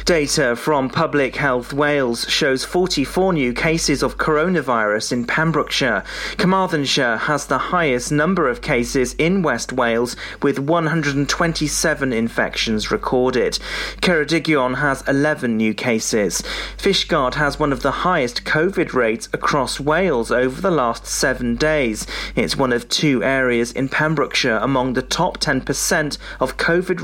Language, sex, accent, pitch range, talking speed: English, male, British, 125-155 Hz, 135 wpm